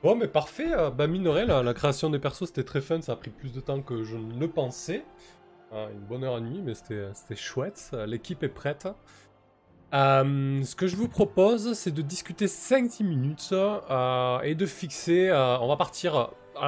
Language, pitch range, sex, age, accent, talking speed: French, 115-160 Hz, male, 20-39, French, 205 wpm